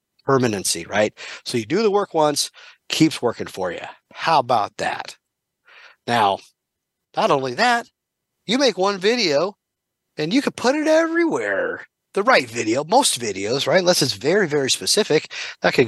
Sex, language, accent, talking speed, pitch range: male, English, American, 160 wpm, 120-195 Hz